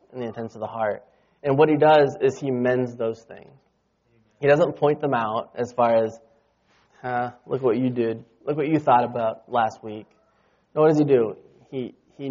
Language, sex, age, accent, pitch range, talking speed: English, male, 20-39, American, 115-150 Hz, 205 wpm